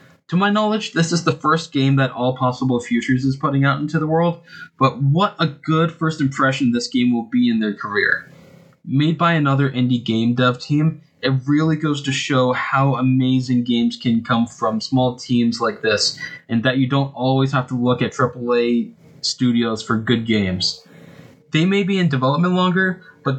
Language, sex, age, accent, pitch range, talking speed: English, male, 20-39, American, 125-155 Hz, 190 wpm